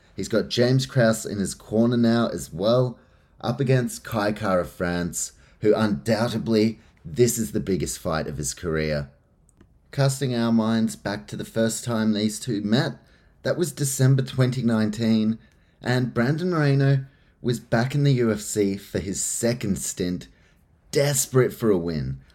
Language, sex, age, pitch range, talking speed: English, male, 30-49, 105-130 Hz, 150 wpm